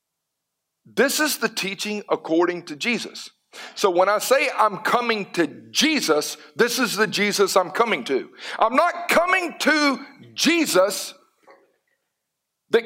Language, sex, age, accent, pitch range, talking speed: English, male, 50-69, American, 190-260 Hz, 130 wpm